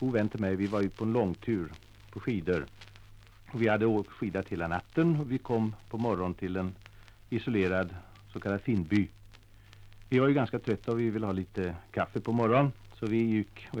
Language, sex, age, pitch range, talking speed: Swedish, male, 60-79, 100-115 Hz, 195 wpm